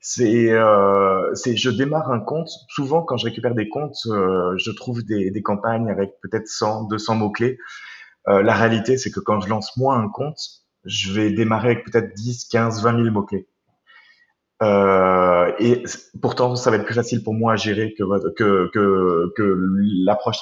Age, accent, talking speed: 20-39, French, 180 wpm